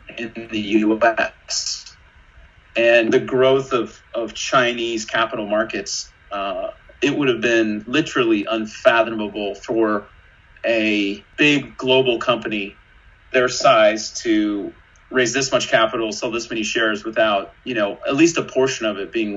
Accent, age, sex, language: American, 30-49, male, English